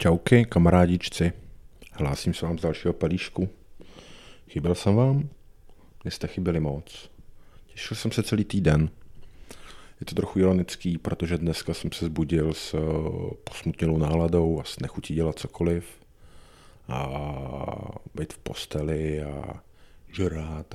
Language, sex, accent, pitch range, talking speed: Czech, male, native, 80-100 Hz, 120 wpm